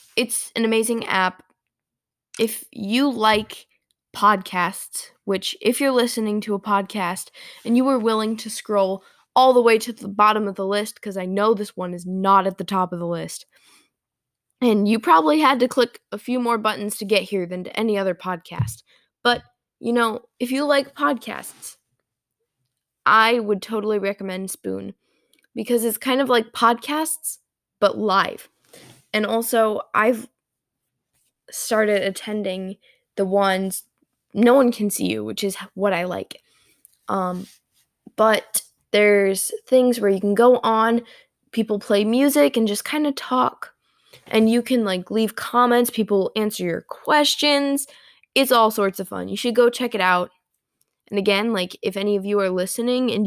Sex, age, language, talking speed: female, 10-29, English, 165 wpm